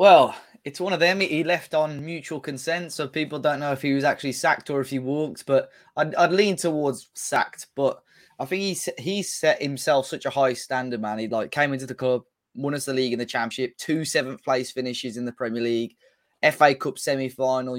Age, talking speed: 20-39, 220 wpm